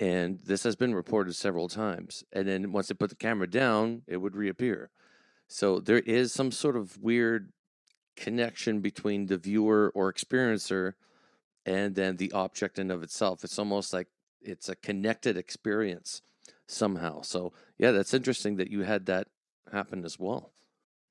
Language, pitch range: English, 95-110 Hz